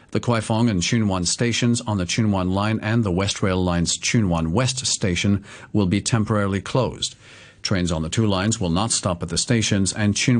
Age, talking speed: 50-69, 200 wpm